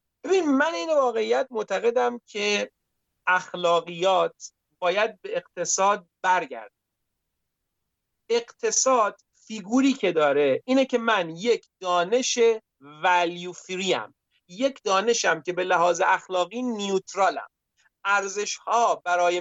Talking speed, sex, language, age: 90 wpm, male, Persian, 40-59